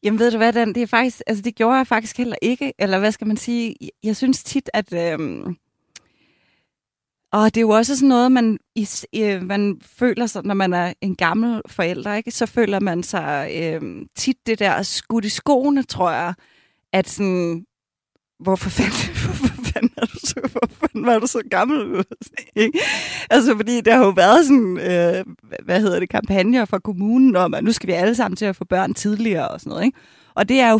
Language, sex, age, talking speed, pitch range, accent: Danish, female, 30-49, 200 wpm, 195-240 Hz, native